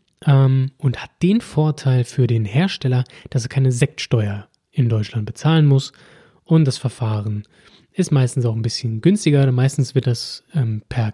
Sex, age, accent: male, 20-39, German